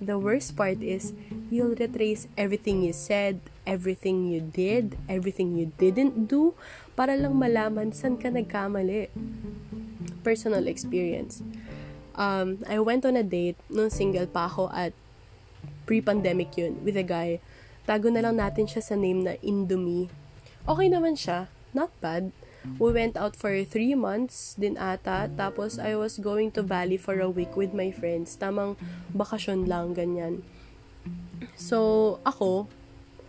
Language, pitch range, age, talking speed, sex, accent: English, 175-215 Hz, 20-39, 140 wpm, female, Filipino